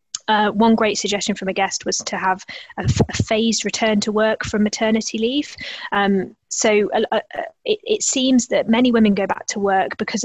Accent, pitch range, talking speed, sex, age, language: British, 195-230 Hz, 205 wpm, female, 20-39, English